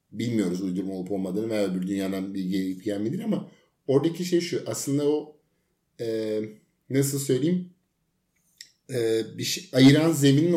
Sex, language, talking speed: male, Turkish, 135 wpm